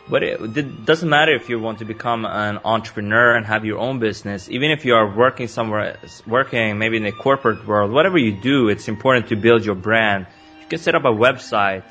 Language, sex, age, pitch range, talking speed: English, male, 20-39, 105-120 Hz, 225 wpm